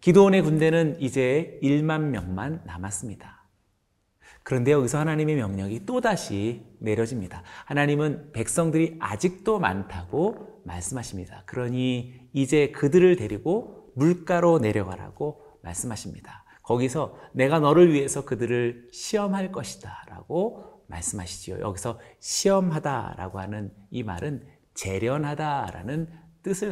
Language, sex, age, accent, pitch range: Korean, male, 40-59, native, 110-165 Hz